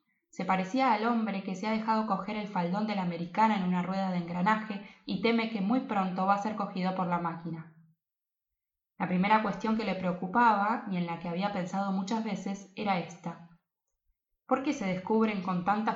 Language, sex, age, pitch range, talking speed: Spanish, female, 20-39, 180-220 Hz, 200 wpm